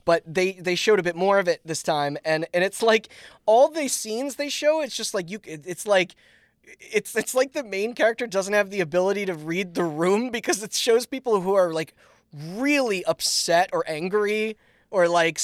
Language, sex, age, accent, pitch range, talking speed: English, male, 20-39, American, 155-220 Hz, 205 wpm